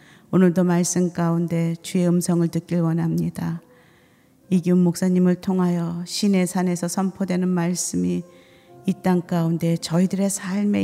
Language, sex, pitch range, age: Korean, female, 150-175 Hz, 40-59